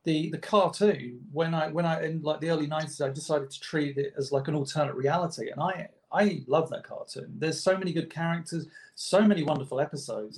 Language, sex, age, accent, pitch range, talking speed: English, male, 40-59, British, 140-185 Hz, 215 wpm